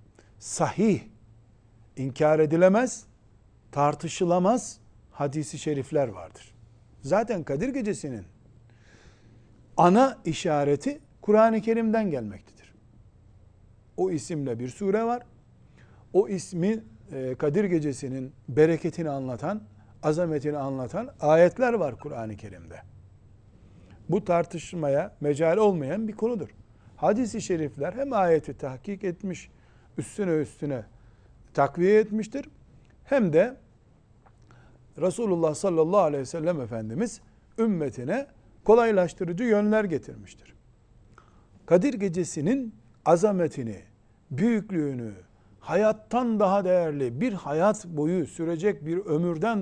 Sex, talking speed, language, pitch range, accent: male, 90 wpm, Turkish, 120-195 Hz, native